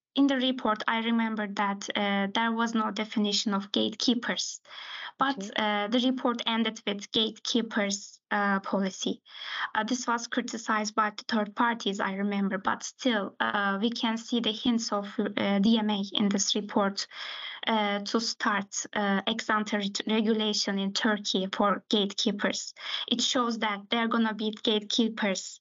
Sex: female